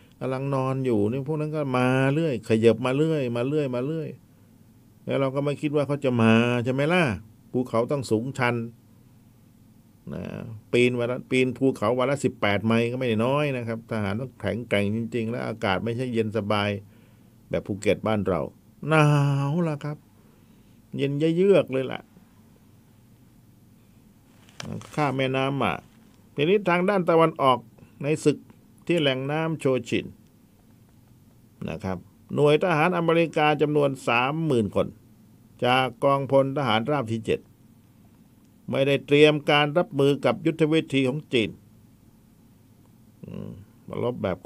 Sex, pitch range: male, 115-150 Hz